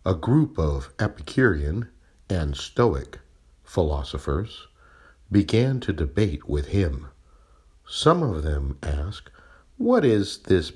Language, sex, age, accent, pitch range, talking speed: English, male, 60-79, American, 75-95 Hz, 105 wpm